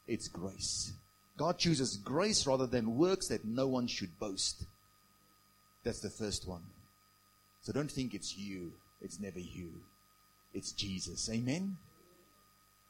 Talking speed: 130 wpm